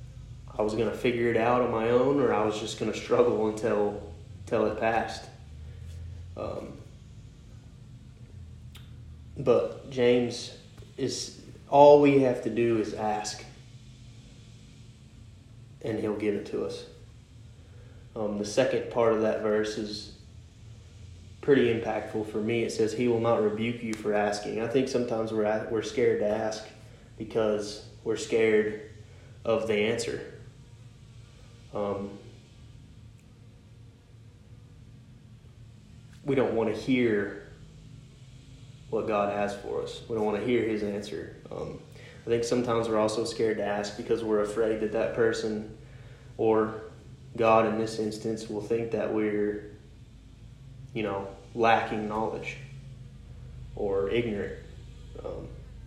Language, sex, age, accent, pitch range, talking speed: English, male, 20-39, American, 105-120 Hz, 130 wpm